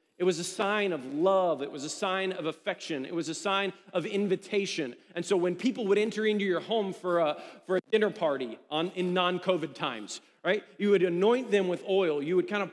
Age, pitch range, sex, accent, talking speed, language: 40-59, 160-220 Hz, male, American, 225 wpm, English